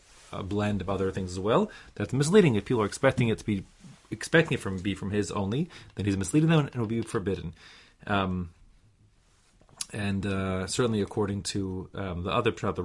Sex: male